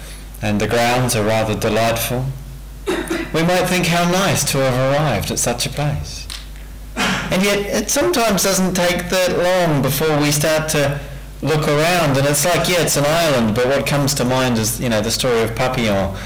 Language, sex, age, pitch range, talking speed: English, male, 30-49, 110-150 Hz, 190 wpm